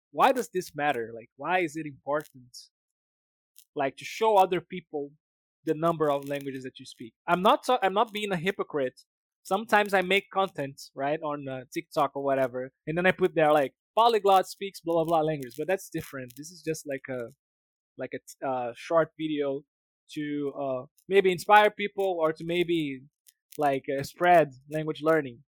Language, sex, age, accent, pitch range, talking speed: English, male, 20-39, Brazilian, 140-180 Hz, 180 wpm